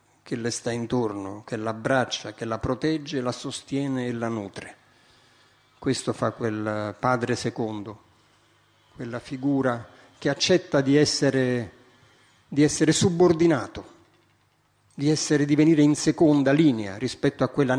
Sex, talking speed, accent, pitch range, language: male, 130 wpm, native, 115-150 Hz, Italian